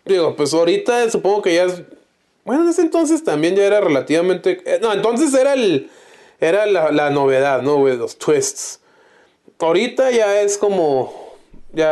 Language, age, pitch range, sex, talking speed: Spanish, 20-39, 140-225 Hz, male, 160 wpm